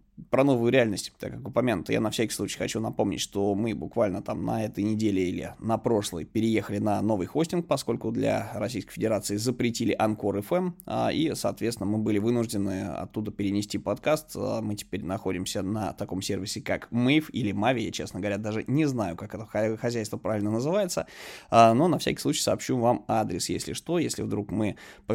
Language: Russian